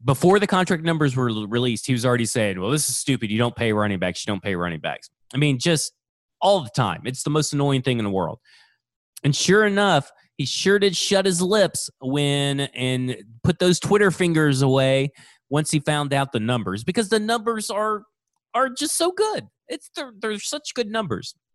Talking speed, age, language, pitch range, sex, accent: 210 wpm, 30-49, English, 120-180 Hz, male, American